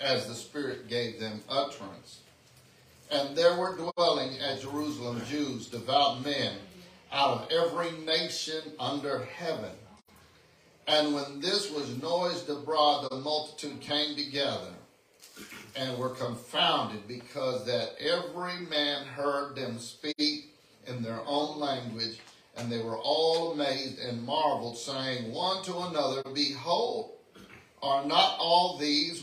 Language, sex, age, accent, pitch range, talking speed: English, male, 50-69, American, 125-155 Hz, 125 wpm